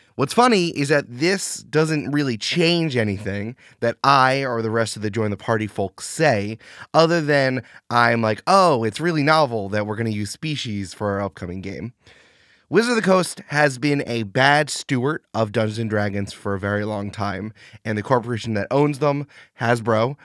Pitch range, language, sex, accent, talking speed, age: 105-145 Hz, English, male, American, 190 wpm, 20-39